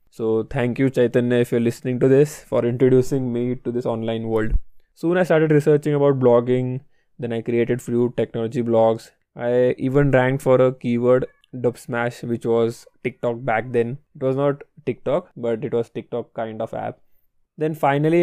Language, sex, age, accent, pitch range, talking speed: English, male, 20-39, Indian, 115-135 Hz, 180 wpm